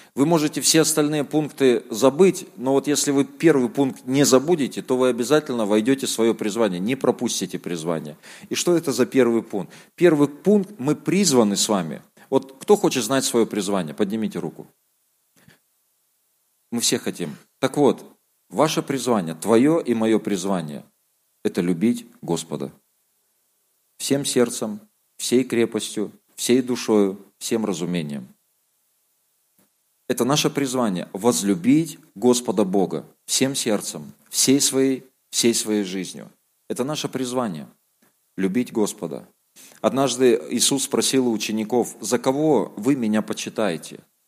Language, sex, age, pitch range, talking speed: Russian, male, 40-59, 105-135 Hz, 130 wpm